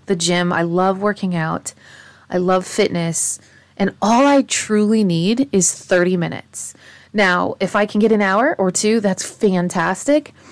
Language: English